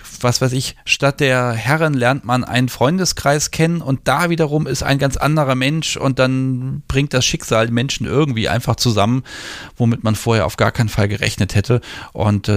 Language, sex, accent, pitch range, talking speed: German, male, German, 105-135 Hz, 180 wpm